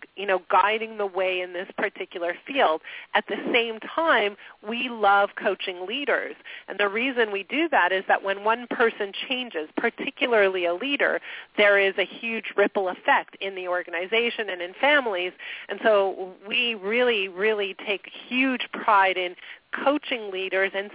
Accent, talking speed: American, 160 wpm